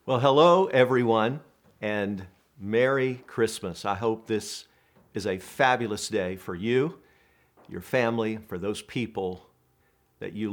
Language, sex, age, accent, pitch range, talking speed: English, male, 50-69, American, 110-165 Hz, 125 wpm